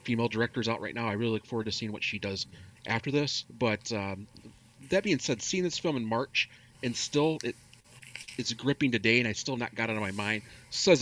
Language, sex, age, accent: English, male, 40-59, American